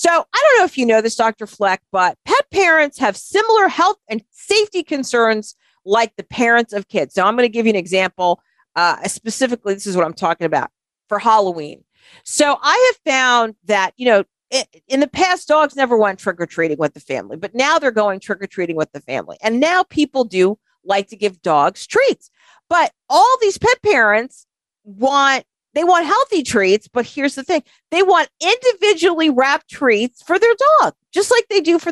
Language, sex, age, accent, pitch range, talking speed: English, female, 40-59, American, 205-325 Hz, 200 wpm